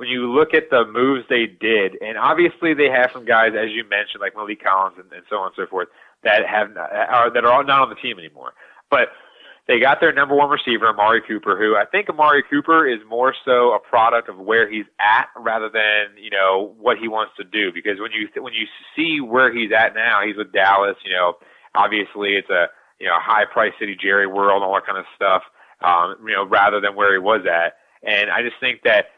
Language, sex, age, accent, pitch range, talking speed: English, male, 30-49, American, 105-130 Hz, 240 wpm